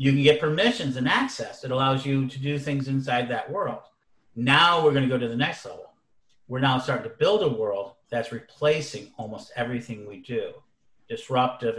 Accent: American